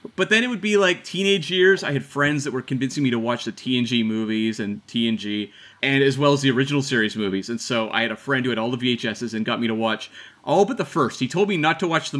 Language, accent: English, American